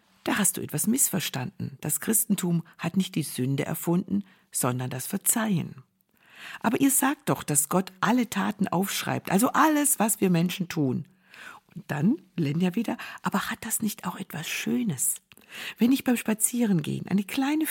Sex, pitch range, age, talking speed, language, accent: female, 160-215 Hz, 60-79, 160 wpm, German, German